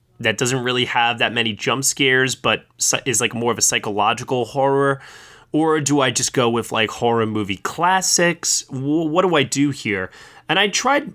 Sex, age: male, 20-39